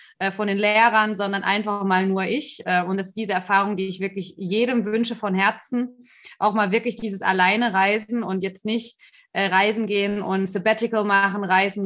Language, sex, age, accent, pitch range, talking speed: German, female, 20-39, German, 195-230 Hz, 175 wpm